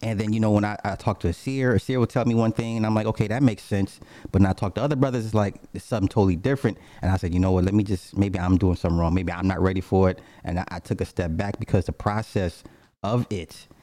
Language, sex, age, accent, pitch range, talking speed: English, male, 30-49, American, 90-105 Hz, 305 wpm